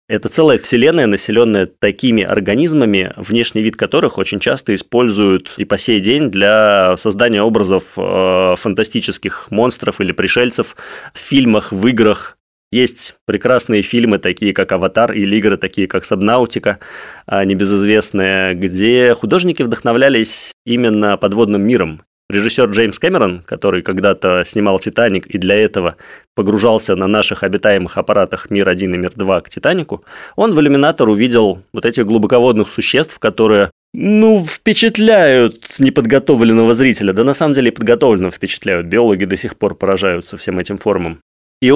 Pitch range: 100-120 Hz